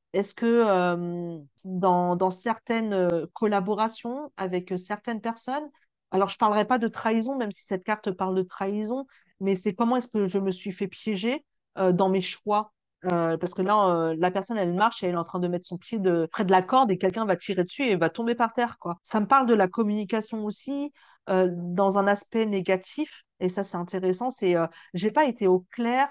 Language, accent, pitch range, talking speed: French, French, 180-215 Hz, 220 wpm